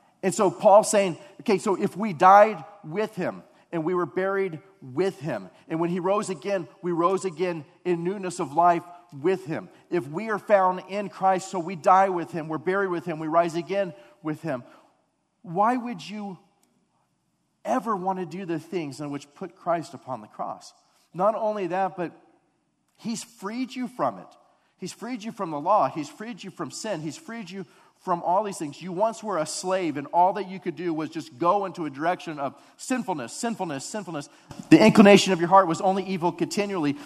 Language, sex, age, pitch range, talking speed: English, male, 40-59, 155-195 Hz, 200 wpm